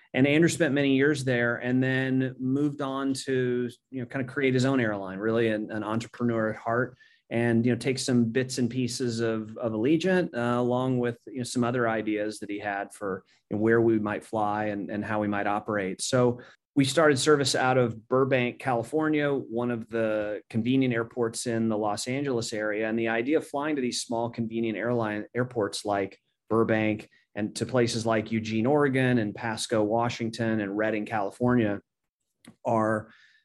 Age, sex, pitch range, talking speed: 30-49, male, 110-130 Hz, 180 wpm